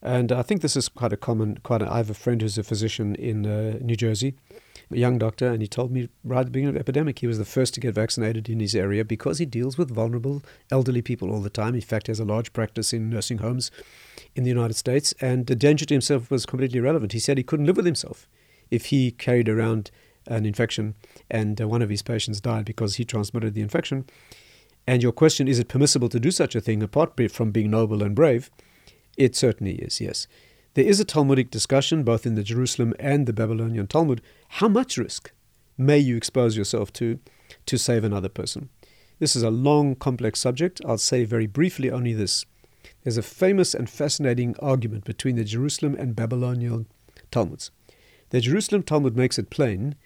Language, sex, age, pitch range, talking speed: English, male, 50-69, 110-135 Hz, 210 wpm